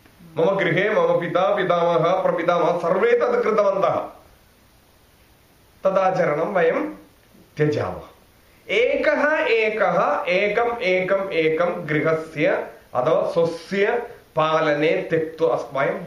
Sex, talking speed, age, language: male, 95 wpm, 30-49, English